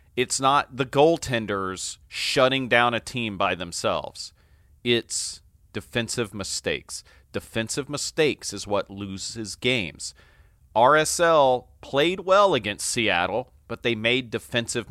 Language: English